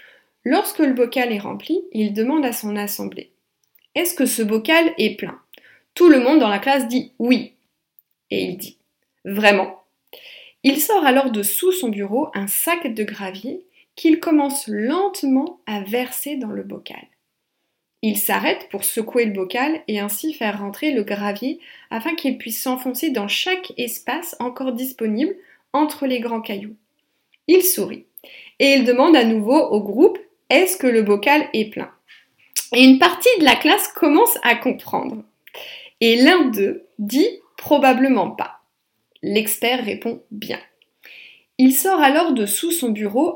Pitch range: 225-315 Hz